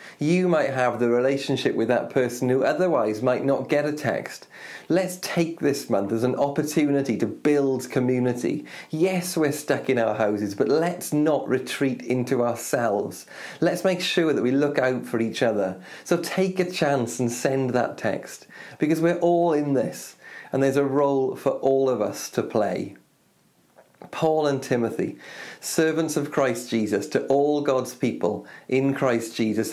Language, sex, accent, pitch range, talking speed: English, male, British, 120-150 Hz, 170 wpm